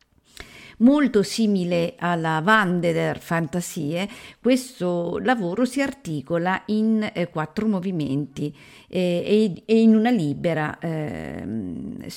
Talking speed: 105 wpm